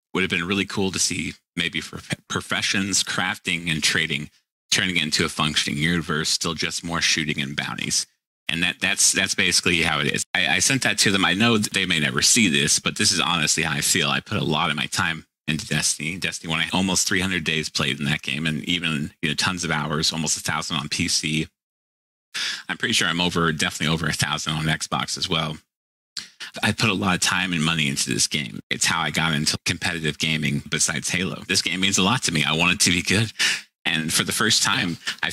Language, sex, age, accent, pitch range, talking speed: English, male, 30-49, American, 75-90 Hz, 230 wpm